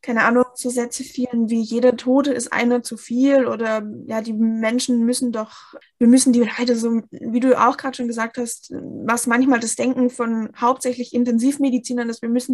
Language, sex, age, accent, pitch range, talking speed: German, female, 10-29, German, 225-255 Hz, 190 wpm